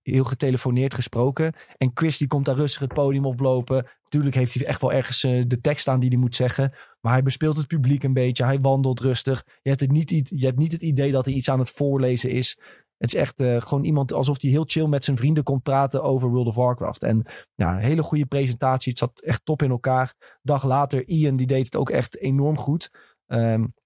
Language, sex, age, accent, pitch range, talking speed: Dutch, male, 20-39, Dutch, 115-140 Hz, 245 wpm